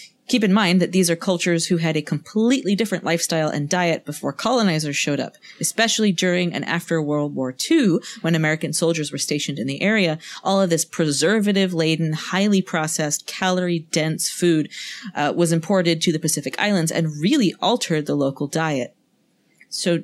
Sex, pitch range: female, 160-205 Hz